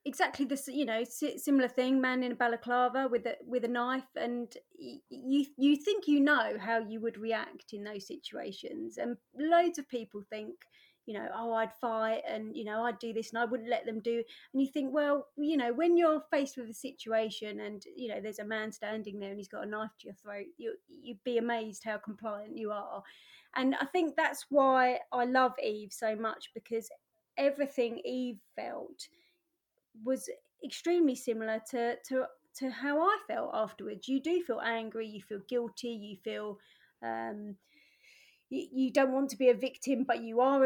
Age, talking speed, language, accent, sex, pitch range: 30-49, 195 wpm, English, British, female, 225-280 Hz